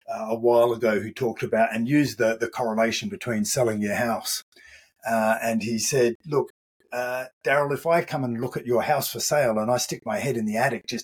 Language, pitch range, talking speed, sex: English, 115-150 Hz, 230 wpm, male